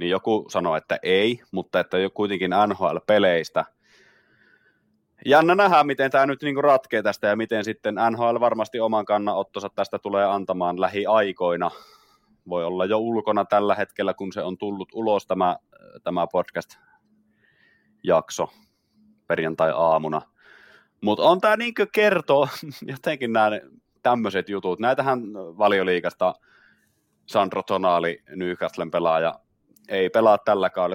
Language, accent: Finnish, native